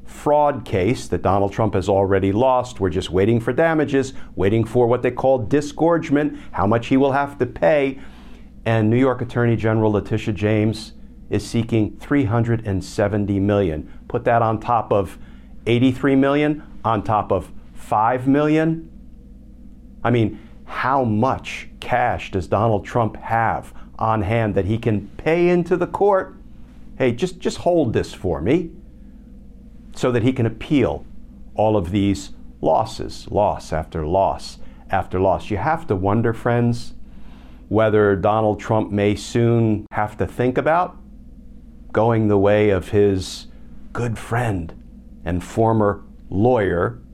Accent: American